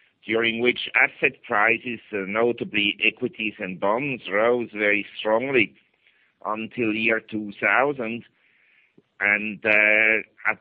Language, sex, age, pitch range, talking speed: English, male, 60-79, 105-115 Hz, 100 wpm